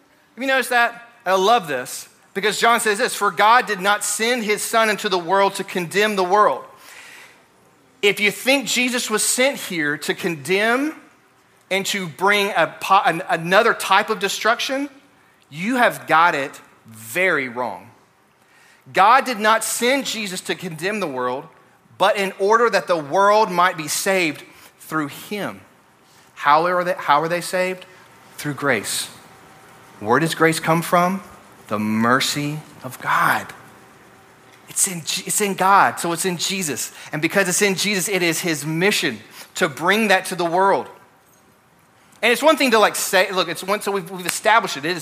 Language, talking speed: English, 165 wpm